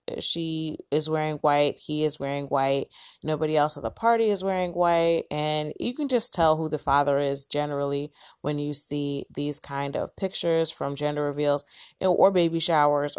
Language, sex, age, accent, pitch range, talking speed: English, female, 20-39, American, 145-170 Hz, 175 wpm